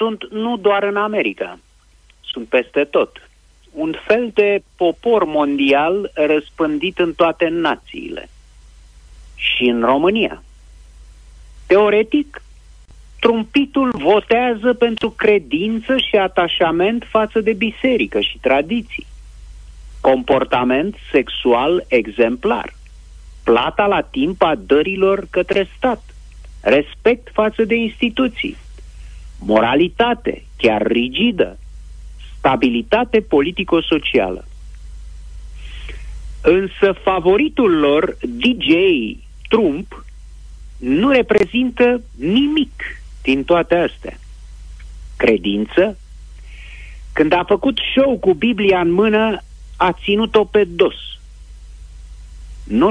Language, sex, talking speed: Romanian, male, 85 wpm